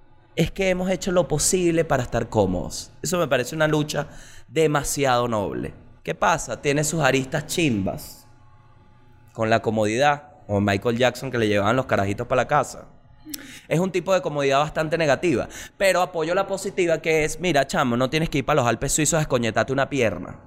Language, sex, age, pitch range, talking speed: Spanish, male, 20-39, 115-155 Hz, 190 wpm